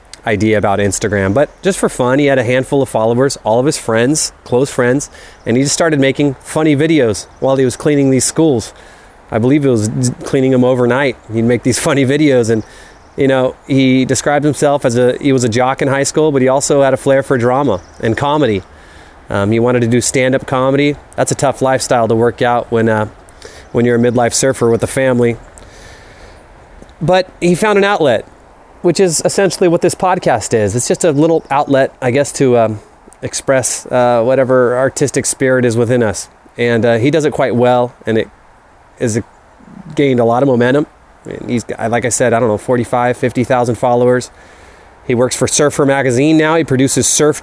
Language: English